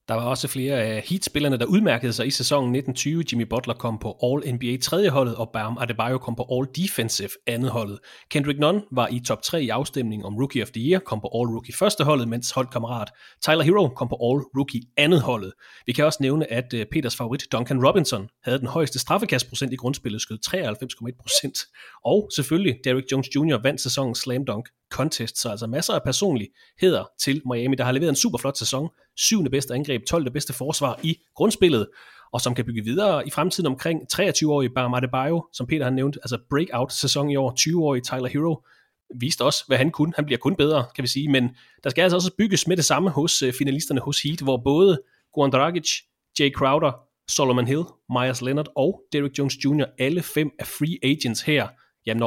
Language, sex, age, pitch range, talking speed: English, male, 30-49, 125-150 Hz, 200 wpm